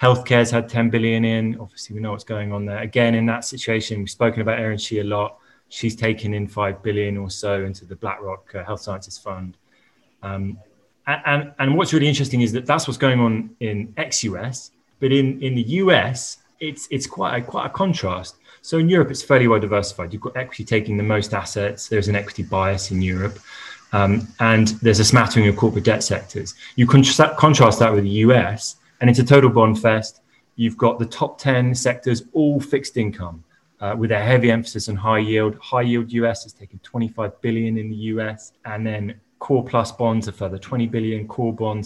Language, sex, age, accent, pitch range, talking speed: English, male, 20-39, British, 105-125 Hz, 205 wpm